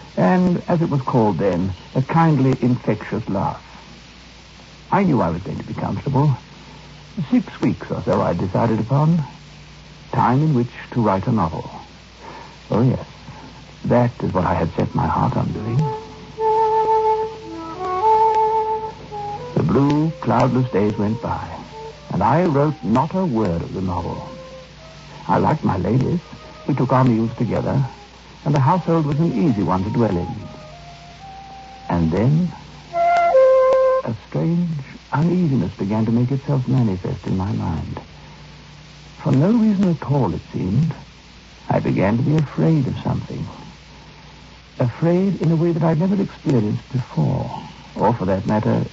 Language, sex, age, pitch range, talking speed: English, male, 70-89, 115-175 Hz, 145 wpm